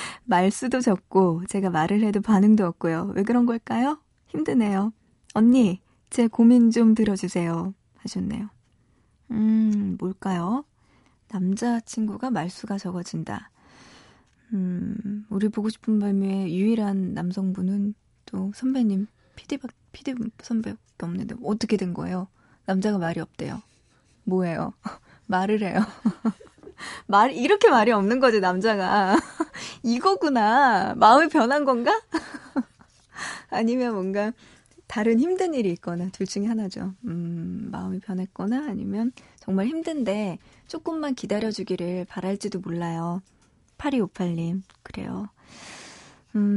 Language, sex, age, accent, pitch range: Korean, female, 20-39, native, 190-235 Hz